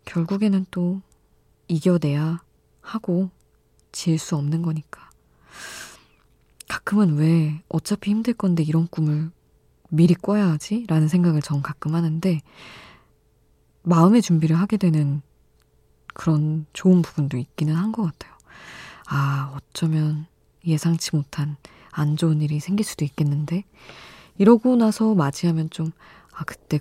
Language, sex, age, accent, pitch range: Korean, female, 20-39, native, 150-185 Hz